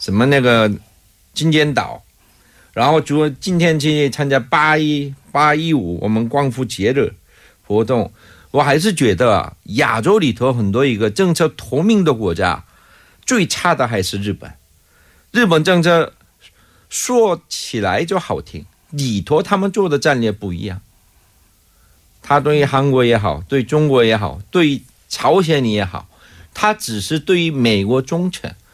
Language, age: Korean, 50-69